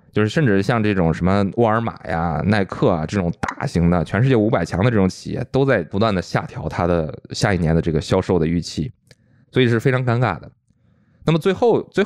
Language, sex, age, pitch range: Chinese, male, 20-39, 85-110 Hz